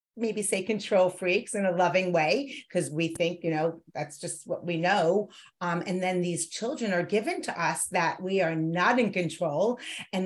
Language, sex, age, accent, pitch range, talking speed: English, female, 40-59, American, 180-210 Hz, 200 wpm